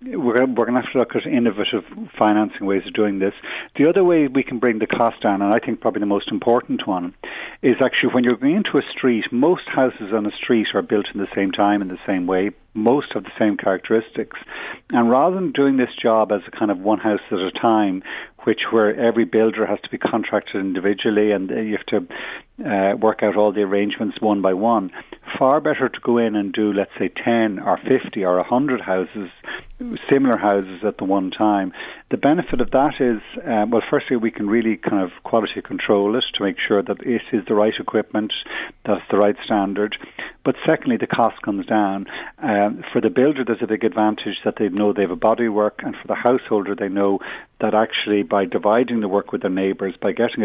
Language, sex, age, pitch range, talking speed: English, male, 50-69, 100-115 Hz, 220 wpm